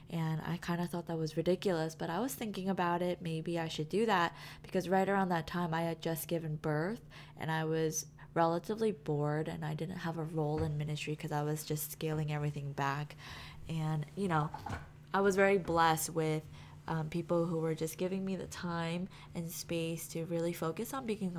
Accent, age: American, 20-39